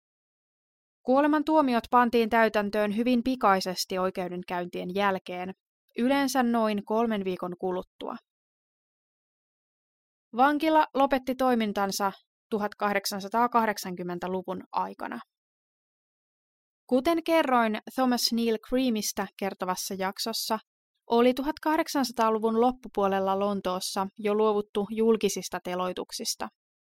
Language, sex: Finnish, female